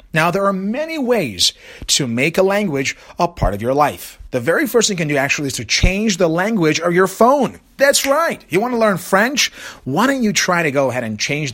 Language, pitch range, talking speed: English, 130-185 Hz, 240 wpm